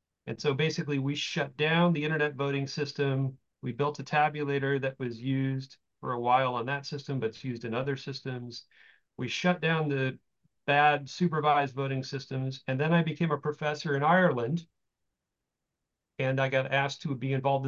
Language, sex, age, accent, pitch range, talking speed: English, male, 40-59, American, 130-150 Hz, 175 wpm